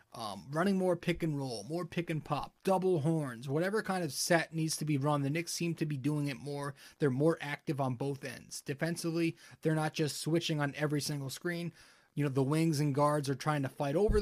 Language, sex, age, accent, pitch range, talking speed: English, male, 30-49, American, 140-165 Hz, 210 wpm